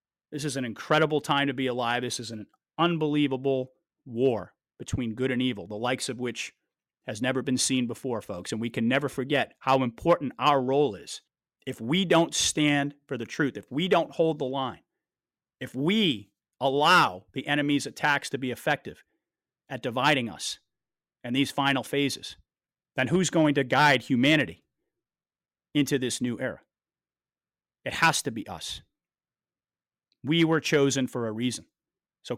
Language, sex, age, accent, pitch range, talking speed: English, male, 30-49, American, 120-145 Hz, 165 wpm